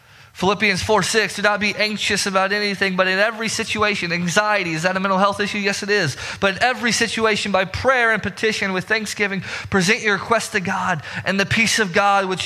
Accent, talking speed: American, 210 wpm